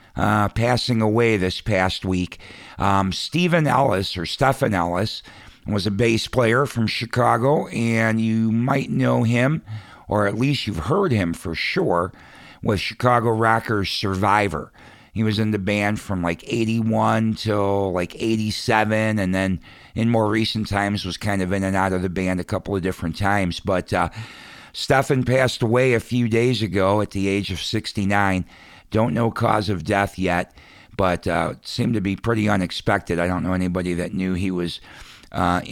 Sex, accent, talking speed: male, American, 180 wpm